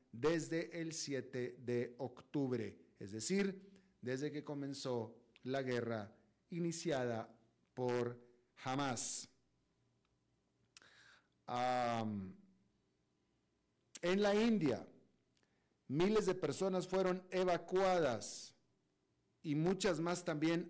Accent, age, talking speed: Mexican, 50-69, 80 wpm